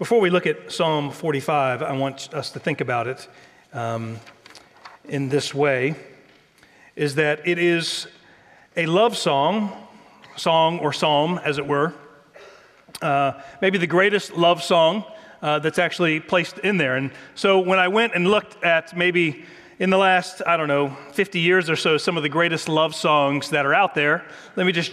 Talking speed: 180 wpm